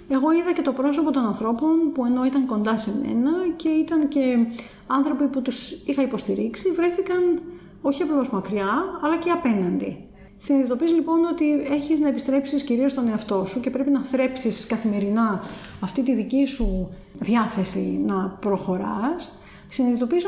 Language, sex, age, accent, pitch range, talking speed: Greek, female, 30-49, native, 220-300 Hz, 150 wpm